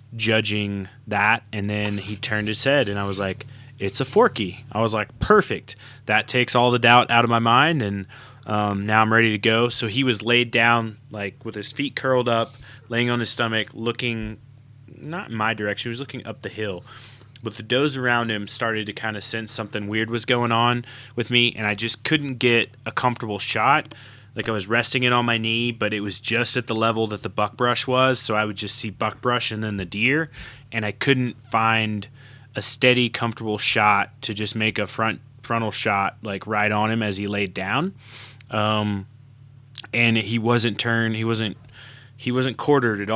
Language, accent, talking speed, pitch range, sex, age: English, American, 210 wpm, 105-125 Hz, male, 20-39